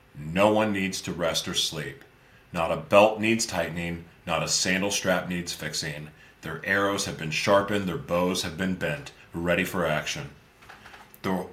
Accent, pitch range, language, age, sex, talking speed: American, 85-105 Hz, English, 40-59, male, 165 wpm